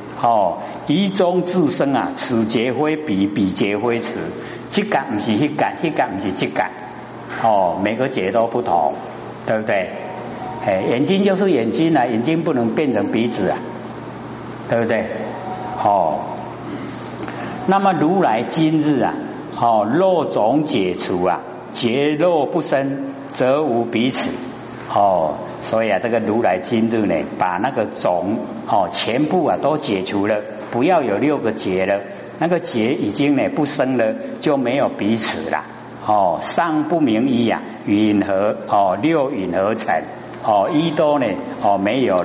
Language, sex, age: Chinese, male, 60-79